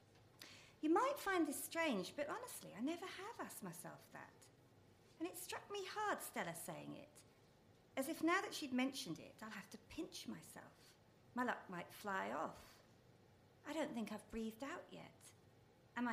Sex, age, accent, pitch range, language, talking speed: female, 40-59, British, 190-260 Hz, English, 170 wpm